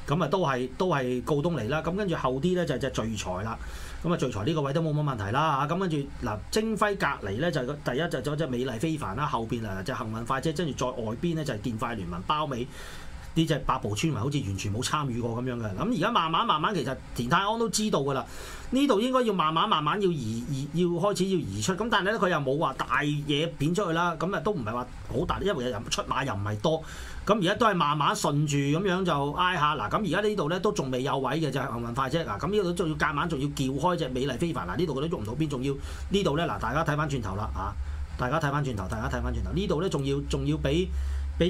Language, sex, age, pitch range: Chinese, male, 30-49, 125-175 Hz